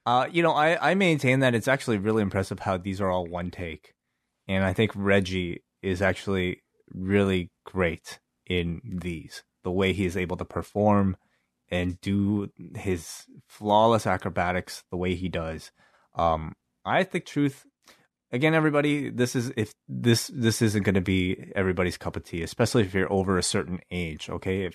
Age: 20-39